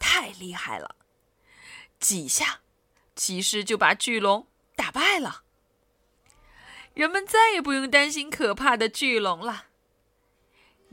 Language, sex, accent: Chinese, female, native